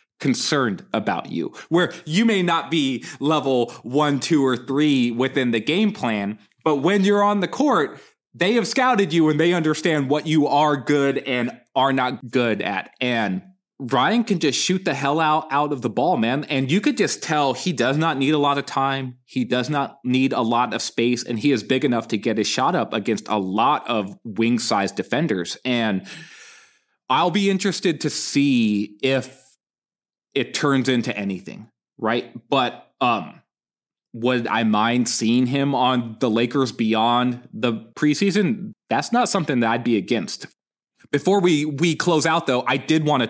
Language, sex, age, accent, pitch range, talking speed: English, male, 20-39, American, 115-160 Hz, 180 wpm